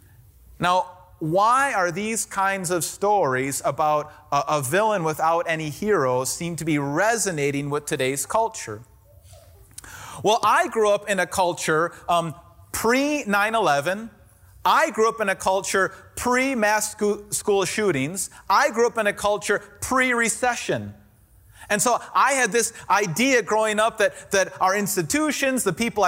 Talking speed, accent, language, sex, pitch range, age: 140 wpm, American, English, male, 150-215 Hz, 30-49